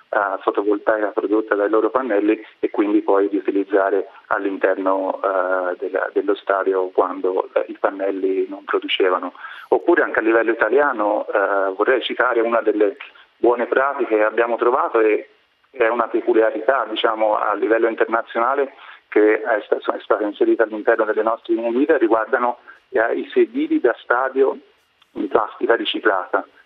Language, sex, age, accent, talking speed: Italian, male, 40-59, native, 140 wpm